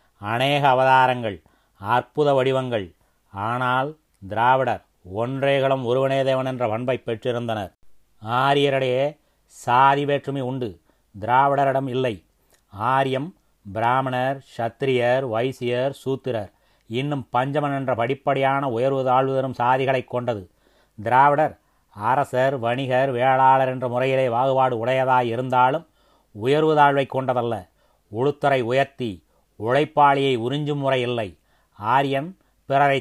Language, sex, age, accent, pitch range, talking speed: Tamil, male, 30-49, native, 120-140 Hz, 90 wpm